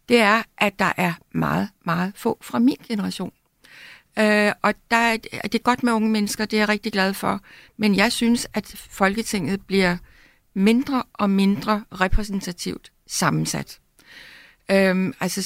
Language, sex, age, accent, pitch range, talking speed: Danish, female, 60-79, native, 185-225 Hz, 155 wpm